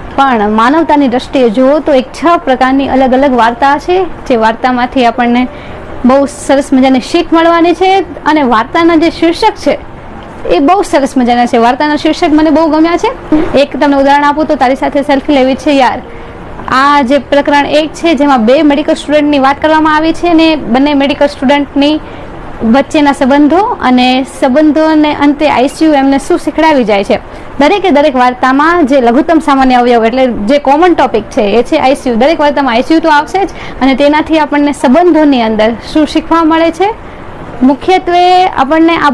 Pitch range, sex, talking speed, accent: 260-315 Hz, female, 80 wpm, native